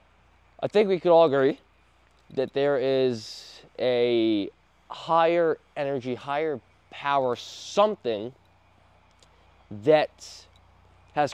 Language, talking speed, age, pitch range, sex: English, 90 wpm, 20-39, 95-155 Hz, male